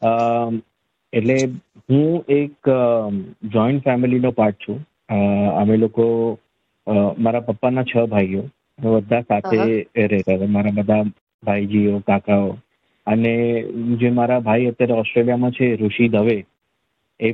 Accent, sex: native, male